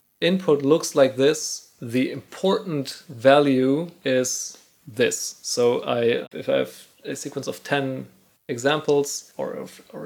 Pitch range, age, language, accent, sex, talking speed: 125-145 Hz, 30-49, English, German, male, 130 wpm